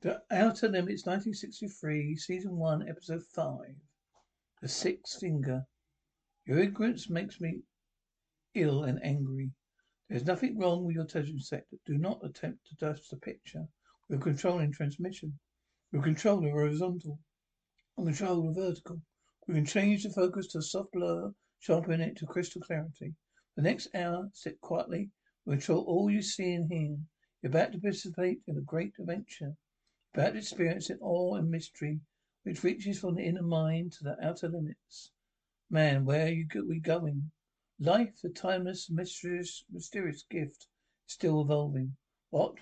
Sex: male